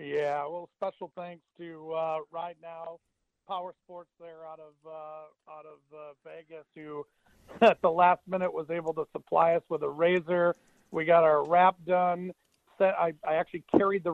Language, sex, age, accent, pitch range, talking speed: English, male, 50-69, American, 160-180 Hz, 180 wpm